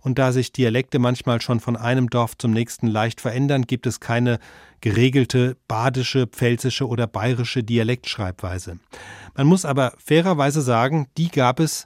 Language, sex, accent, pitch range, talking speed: German, male, German, 120-150 Hz, 150 wpm